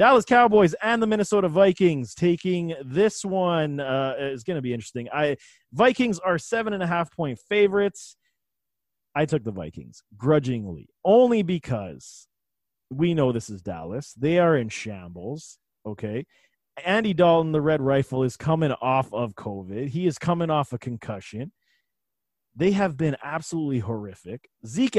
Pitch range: 130-180 Hz